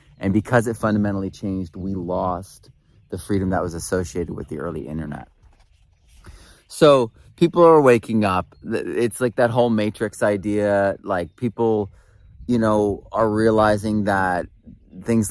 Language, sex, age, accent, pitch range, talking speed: English, male, 30-49, American, 90-105 Hz, 135 wpm